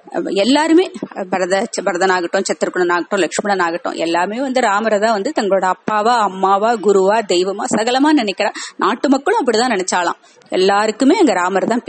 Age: 30-49